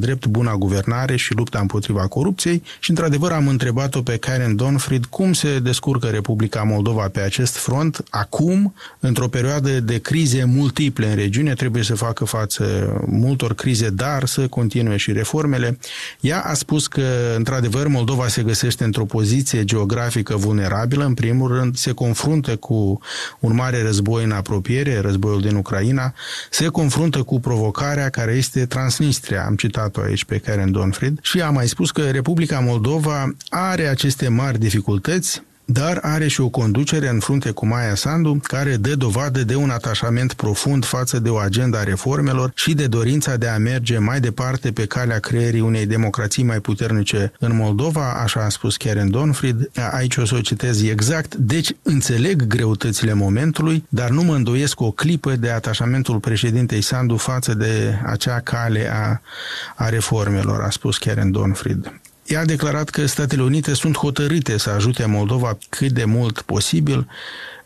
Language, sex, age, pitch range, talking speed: Romanian, male, 30-49, 110-140 Hz, 160 wpm